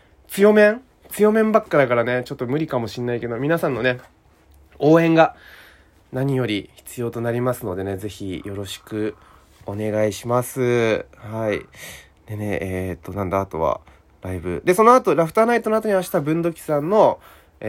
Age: 20-39